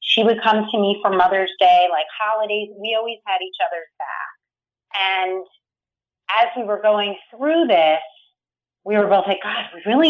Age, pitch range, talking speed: 30-49, 185-270 Hz, 180 wpm